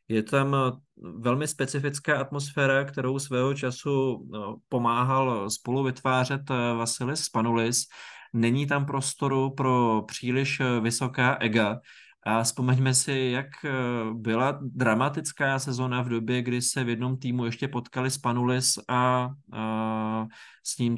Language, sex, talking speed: Slovak, male, 115 wpm